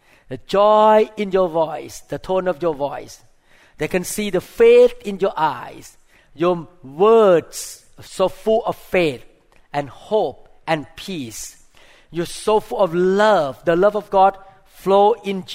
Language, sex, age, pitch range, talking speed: English, male, 50-69, 145-200 Hz, 155 wpm